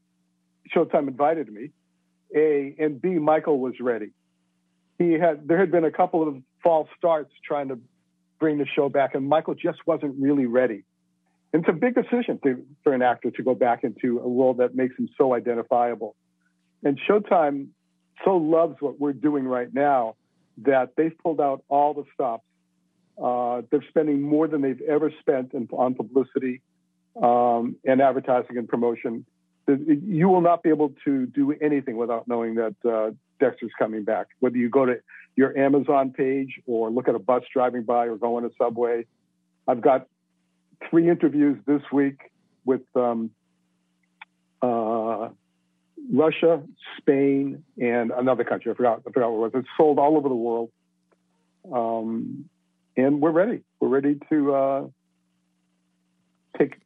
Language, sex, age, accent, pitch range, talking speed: English, male, 60-79, American, 110-150 Hz, 160 wpm